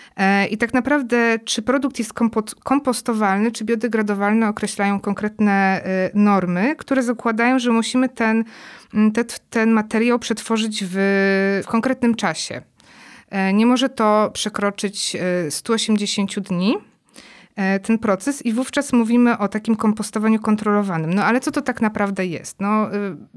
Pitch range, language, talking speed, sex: 200-235 Hz, Polish, 120 wpm, female